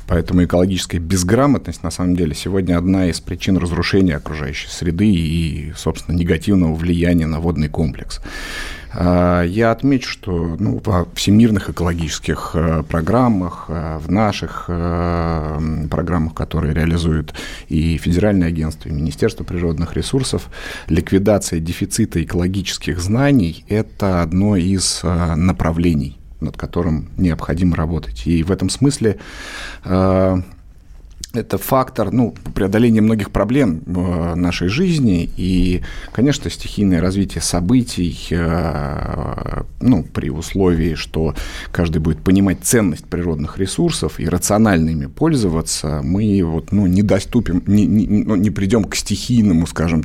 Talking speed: 110 wpm